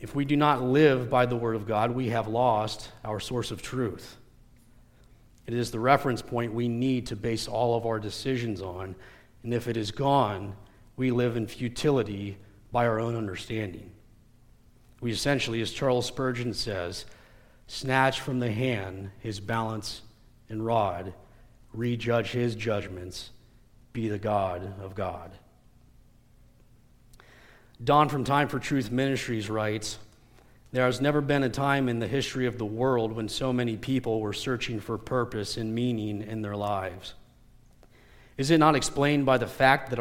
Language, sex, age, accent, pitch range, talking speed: English, male, 40-59, American, 110-125 Hz, 160 wpm